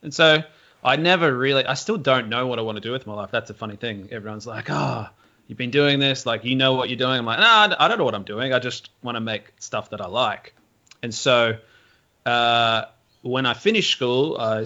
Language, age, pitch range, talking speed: English, 20-39, 110-125 Hz, 250 wpm